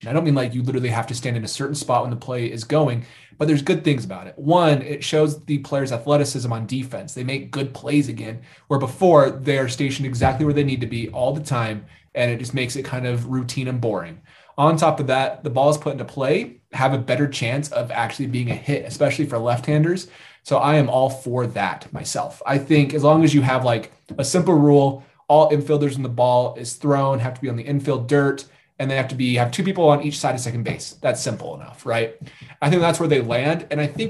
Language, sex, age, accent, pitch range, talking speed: English, male, 20-39, American, 120-150 Hz, 250 wpm